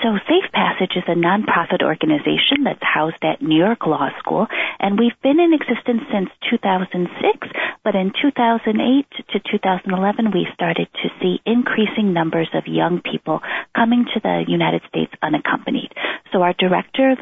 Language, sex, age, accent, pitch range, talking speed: English, female, 30-49, American, 165-235 Hz, 155 wpm